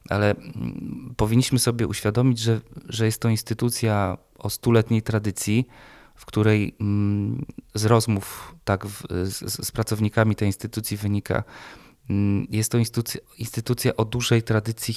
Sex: male